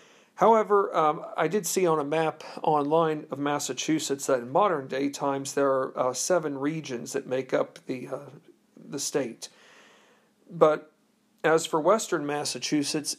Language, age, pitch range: English, 50-69, 140-165 Hz